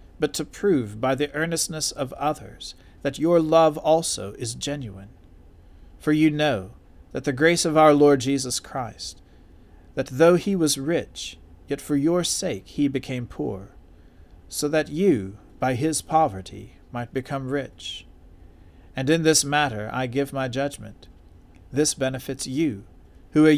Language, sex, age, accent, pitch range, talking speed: English, male, 40-59, American, 95-150 Hz, 150 wpm